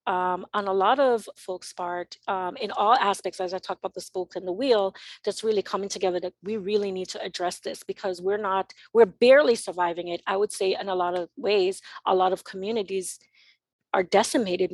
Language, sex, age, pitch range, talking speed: English, female, 30-49, 185-225 Hz, 210 wpm